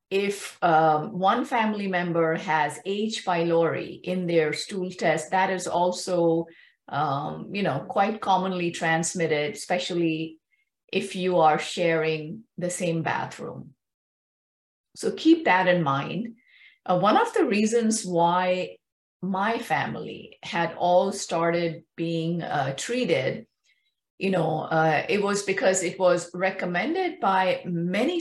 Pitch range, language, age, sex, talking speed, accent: 165-200 Hz, English, 50-69, female, 125 wpm, Indian